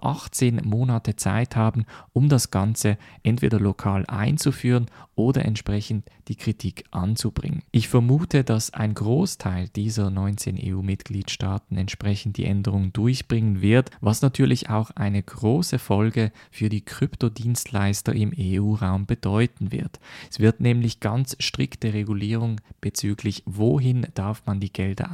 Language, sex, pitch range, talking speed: German, male, 105-120 Hz, 125 wpm